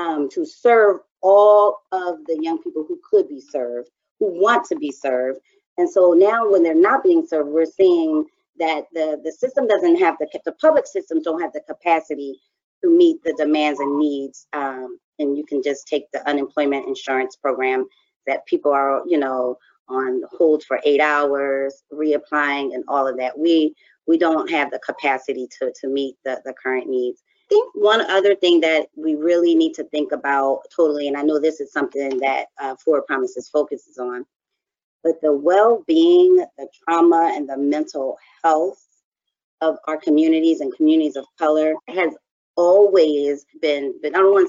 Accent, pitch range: American, 145-195 Hz